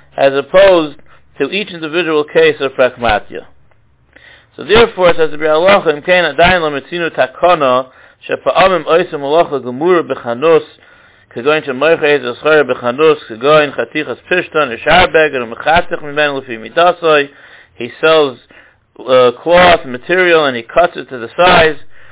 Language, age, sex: English, 60-79, male